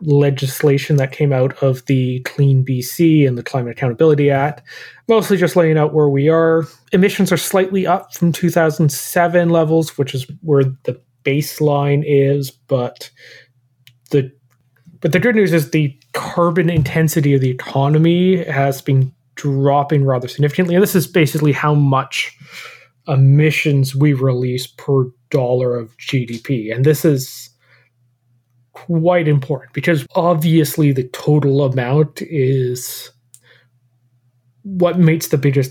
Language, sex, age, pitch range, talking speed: English, male, 30-49, 130-155 Hz, 135 wpm